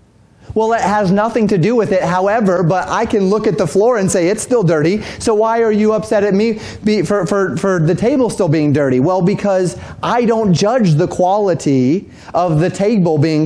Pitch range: 140-190 Hz